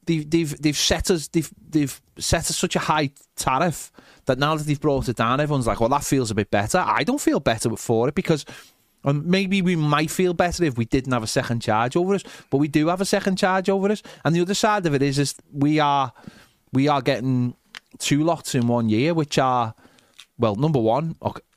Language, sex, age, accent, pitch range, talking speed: English, male, 30-49, British, 110-155 Hz, 230 wpm